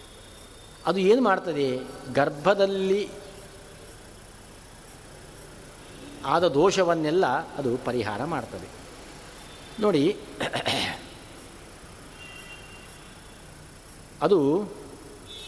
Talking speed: 45 wpm